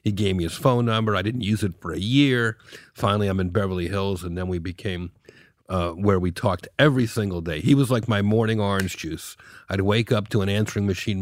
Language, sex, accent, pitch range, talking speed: English, male, American, 90-110 Hz, 230 wpm